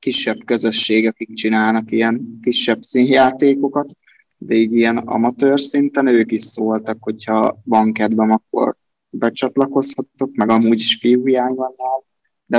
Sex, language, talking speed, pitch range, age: male, Hungarian, 125 wpm, 110-130 Hz, 20-39